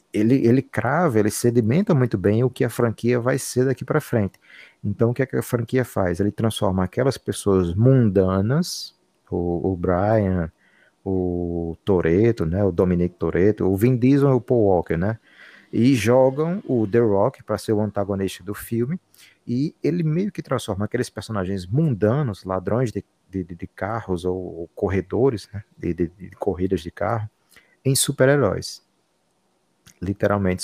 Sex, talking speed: male, 165 wpm